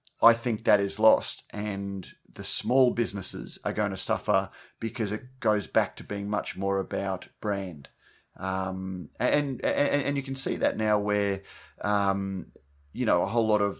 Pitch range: 95-110 Hz